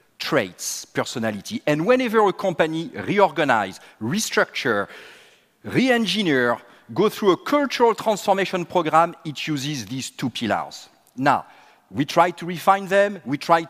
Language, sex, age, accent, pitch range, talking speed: English, male, 40-59, French, 160-220 Hz, 125 wpm